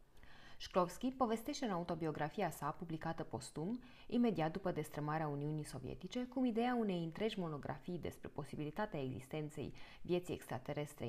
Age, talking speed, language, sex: 20-39, 120 wpm, Romanian, female